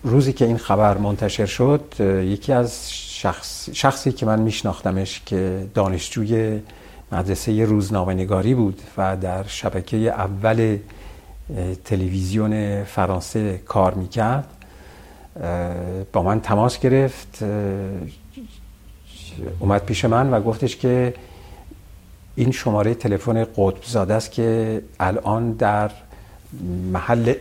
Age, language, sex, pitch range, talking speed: 50-69, Persian, male, 95-115 Hz, 100 wpm